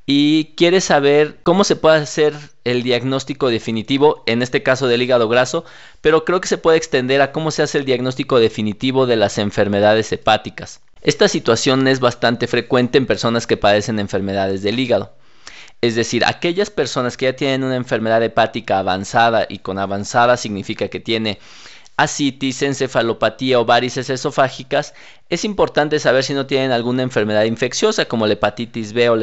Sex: male